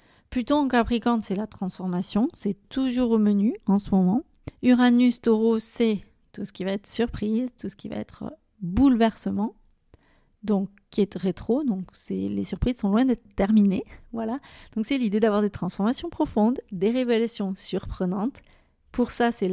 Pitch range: 205-240 Hz